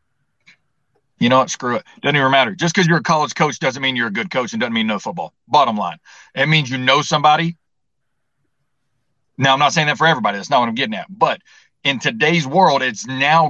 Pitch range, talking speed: 130-160 Hz, 225 wpm